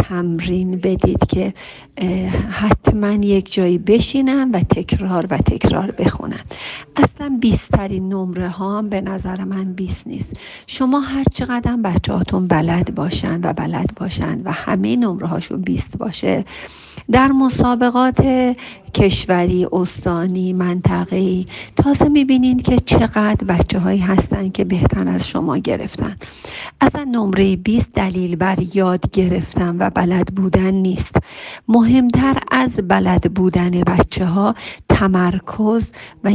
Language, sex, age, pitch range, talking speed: Persian, female, 50-69, 180-215 Hz, 120 wpm